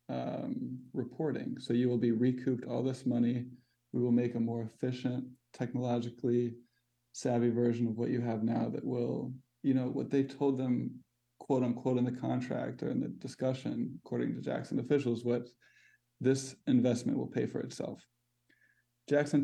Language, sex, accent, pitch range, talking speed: English, male, American, 120-125 Hz, 165 wpm